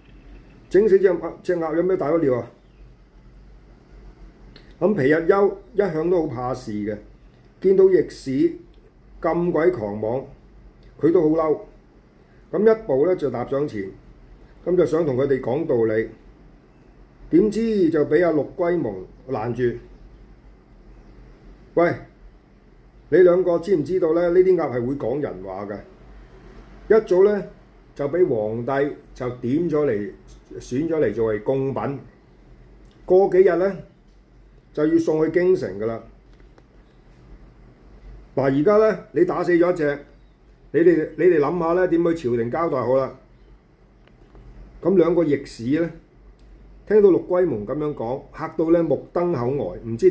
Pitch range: 120-185 Hz